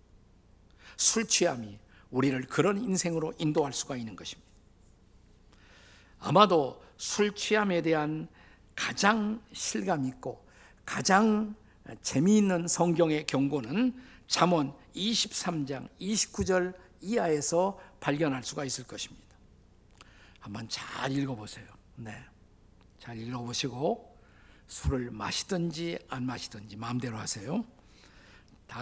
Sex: male